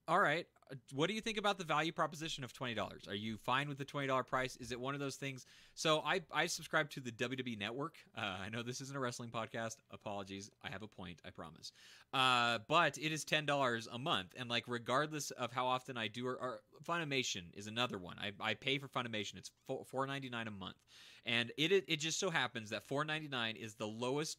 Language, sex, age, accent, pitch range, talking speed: English, male, 30-49, American, 110-140 Hz, 235 wpm